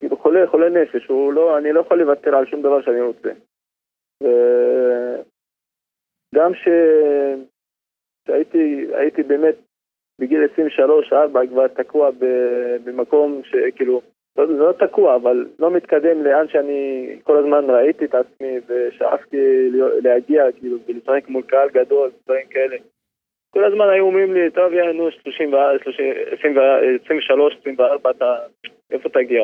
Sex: male